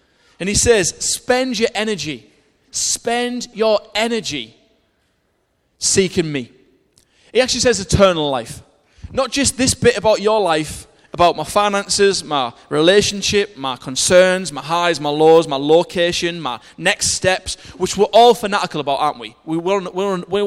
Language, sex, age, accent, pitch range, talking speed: English, male, 20-39, British, 150-230 Hz, 140 wpm